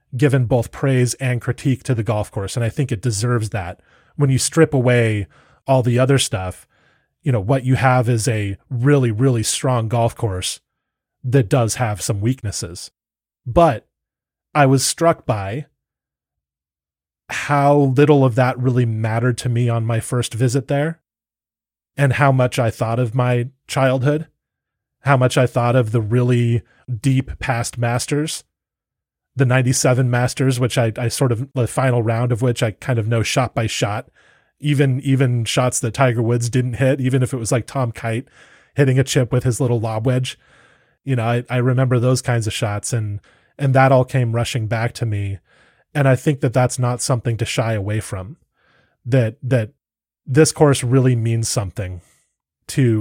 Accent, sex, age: American, male, 30-49